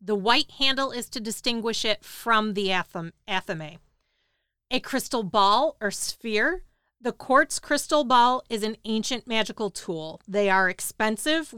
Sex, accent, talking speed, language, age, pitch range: female, American, 140 wpm, English, 40-59, 210-255 Hz